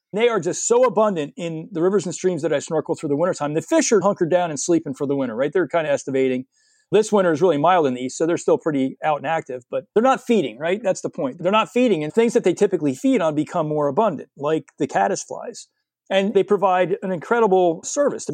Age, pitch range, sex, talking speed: 40-59, 155-200 Hz, male, 250 wpm